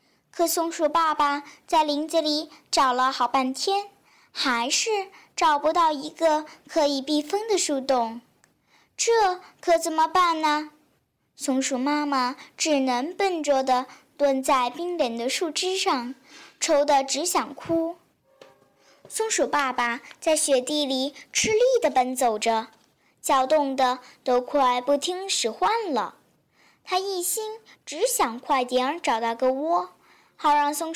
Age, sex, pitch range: 10-29, male, 260-345 Hz